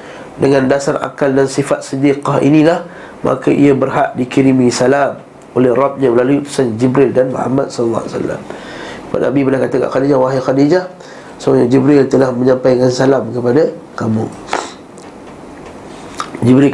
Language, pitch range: Malay, 120-140 Hz